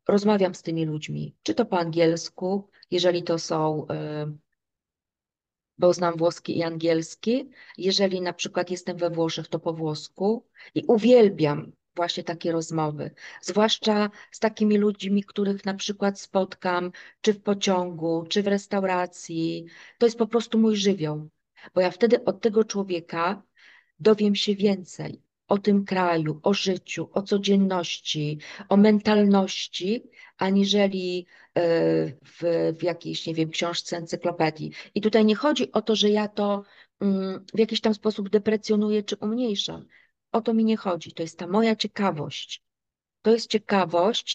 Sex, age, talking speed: female, 40-59, 140 wpm